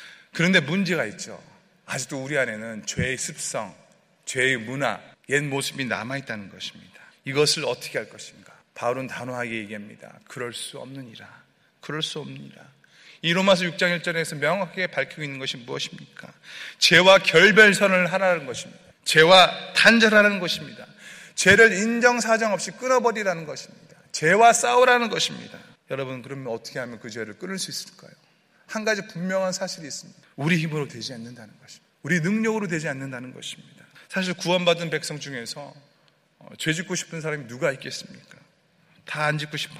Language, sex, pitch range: Korean, male, 140-185 Hz